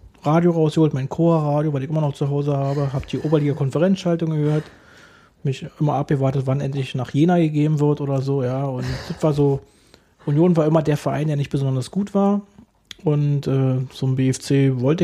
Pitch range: 135-155 Hz